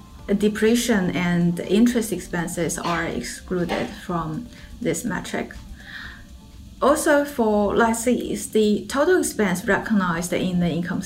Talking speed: 105 wpm